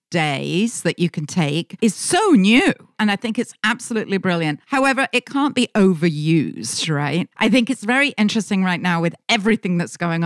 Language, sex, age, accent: English, female, 50-69, British